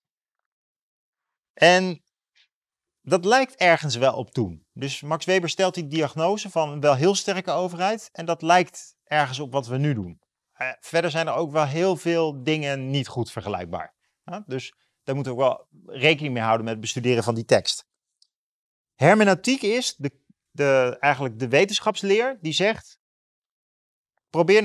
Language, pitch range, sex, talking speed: Dutch, 130-185 Hz, male, 150 wpm